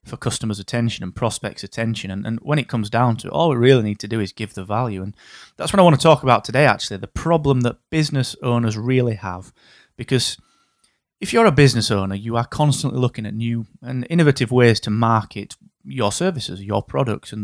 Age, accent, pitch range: 20-39, British, 105-135 Hz